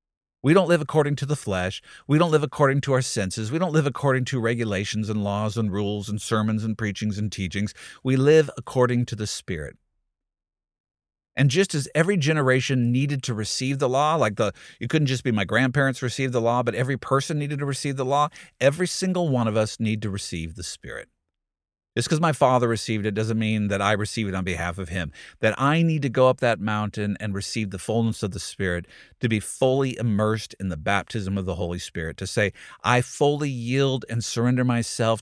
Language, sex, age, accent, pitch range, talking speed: English, male, 50-69, American, 100-130 Hz, 215 wpm